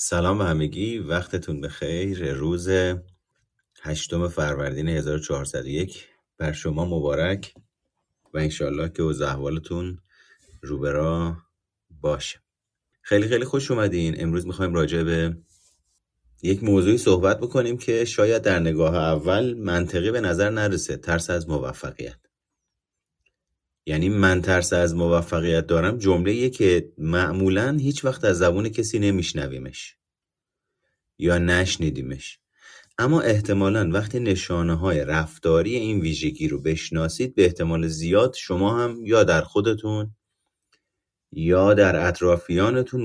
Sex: male